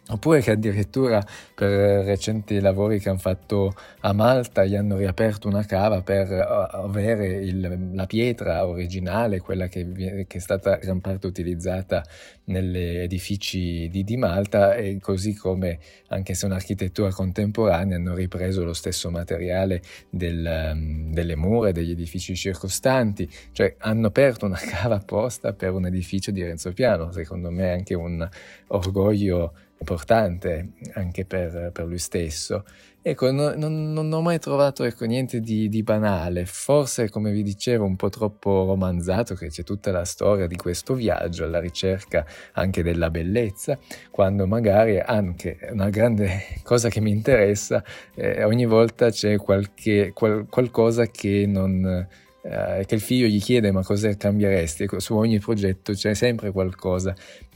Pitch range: 90-105 Hz